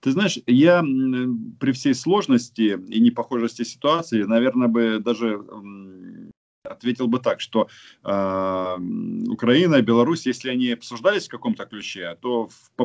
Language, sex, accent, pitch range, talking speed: Russian, male, native, 95-135 Hz, 130 wpm